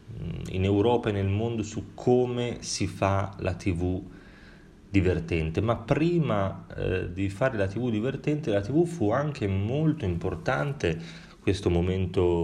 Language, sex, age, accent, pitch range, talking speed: Italian, male, 30-49, native, 90-115 Hz, 135 wpm